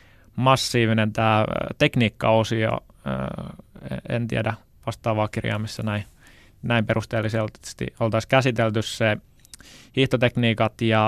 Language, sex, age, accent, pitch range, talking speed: Finnish, male, 20-39, native, 110-120 Hz, 80 wpm